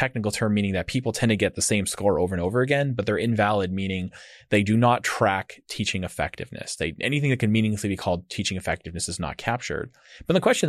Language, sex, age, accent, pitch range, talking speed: English, male, 30-49, American, 95-125 Hz, 225 wpm